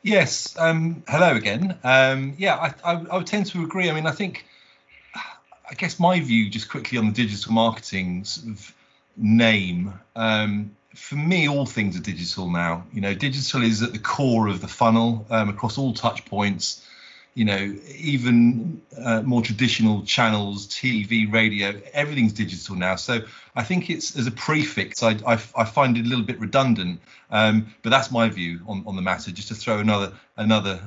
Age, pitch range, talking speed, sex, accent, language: 30-49, 105-135 Hz, 185 wpm, male, British, English